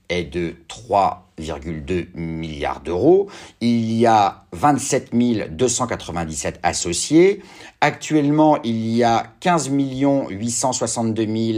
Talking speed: 90 wpm